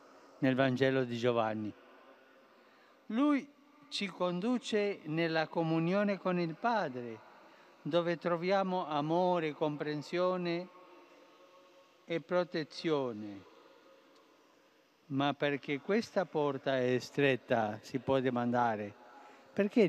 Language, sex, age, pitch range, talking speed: Italian, male, 60-79, 135-190 Hz, 85 wpm